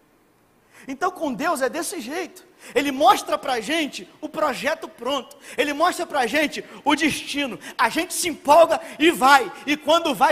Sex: male